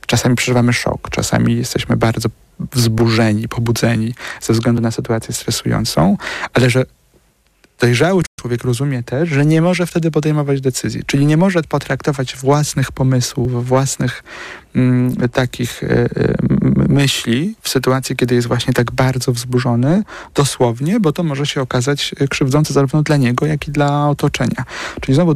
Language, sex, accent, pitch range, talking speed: Polish, male, native, 125-150 Hz, 135 wpm